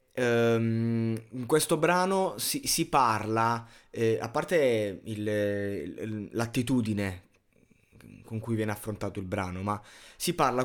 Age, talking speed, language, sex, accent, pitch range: 20-39, 105 wpm, Italian, male, native, 115-145 Hz